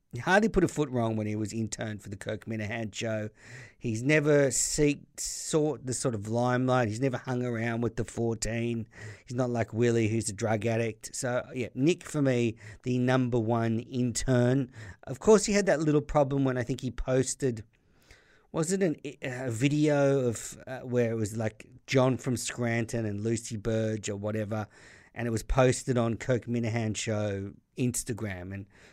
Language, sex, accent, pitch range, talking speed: English, male, Australian, 110-130 Hz, 180 wpm